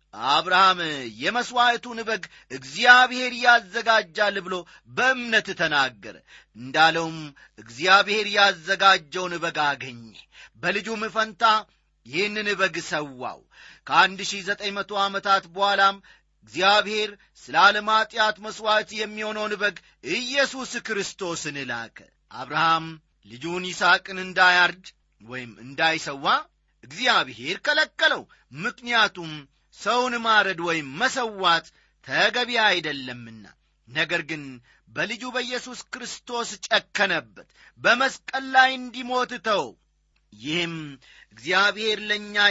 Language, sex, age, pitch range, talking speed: Amharic, male, 40-59, 165-230 Hz, 80 wpm